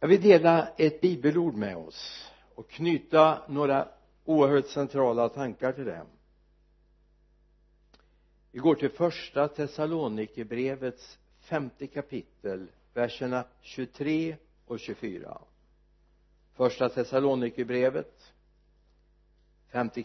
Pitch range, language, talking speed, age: 120-155 Hz, Swedish, 95 wpm, 60-79